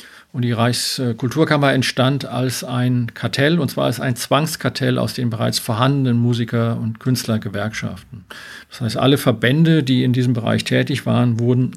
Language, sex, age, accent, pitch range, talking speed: German, male, 50-69, German, 120-135 Hz, 155 wpm